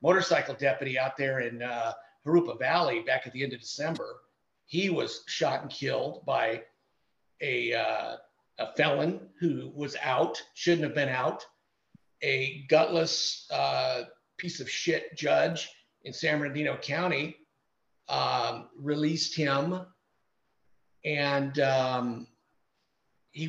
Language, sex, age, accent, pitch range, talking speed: English, male, 50-69, American, 140-170 Hz, 125 wpm